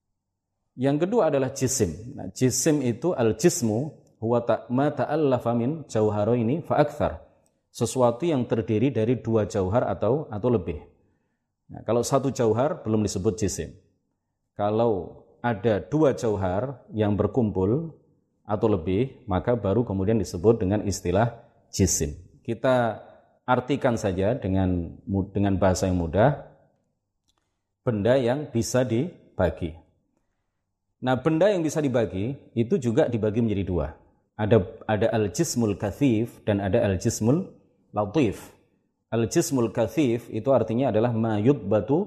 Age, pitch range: 30-49, 100-125 Hz